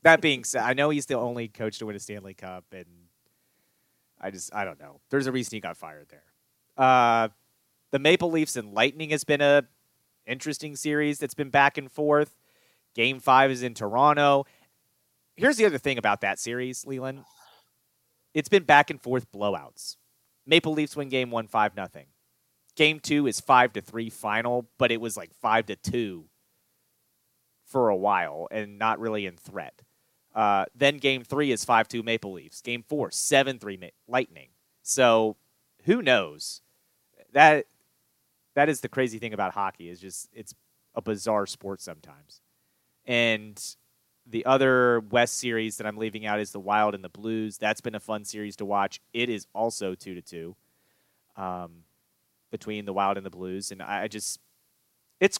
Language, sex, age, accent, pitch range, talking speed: English, male, 30-49, American, 100-135 Hz, 170 wpm